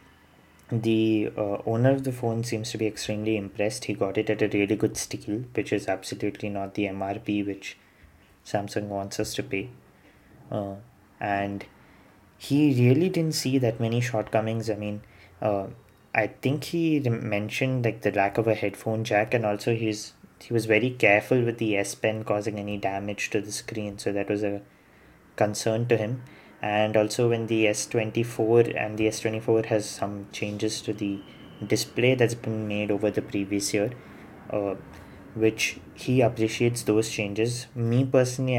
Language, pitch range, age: English, 100-115 Hz, 20-39